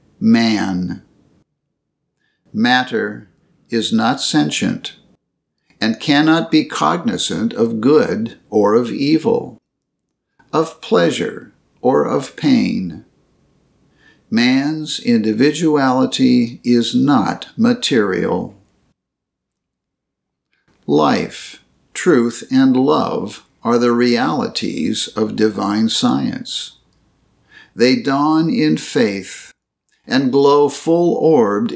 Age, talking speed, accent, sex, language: 60-79, 75 wpm, American, male, English